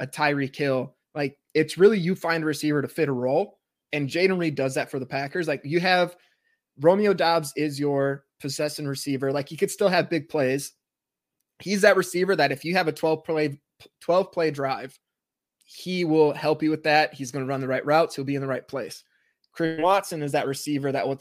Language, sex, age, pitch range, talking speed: English, male, 20-39, 140-165 Hz, 220 wpm